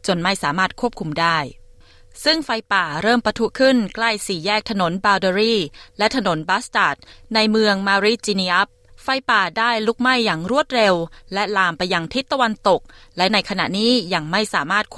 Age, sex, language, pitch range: 20-39, female, Thai, 175-245 Hz